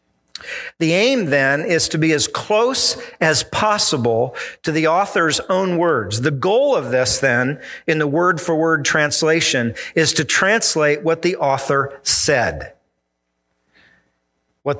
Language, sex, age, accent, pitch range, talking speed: English, male, 50-69, American, 135-190 Hz, 130 wpm